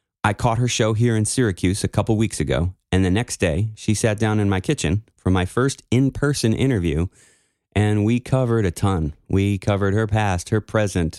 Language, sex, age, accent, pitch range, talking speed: English, male, 30-49, American, 90-110 Hz, 200 wpm